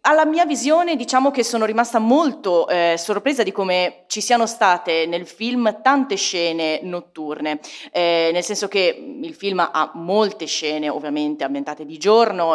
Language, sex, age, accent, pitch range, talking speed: Italian, female, 30-49, native, 170-225 Hz, 160 wpm